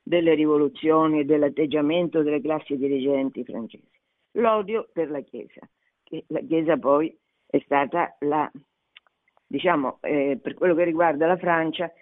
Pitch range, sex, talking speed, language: 150-205 Hz, female, 135 wpm, Italian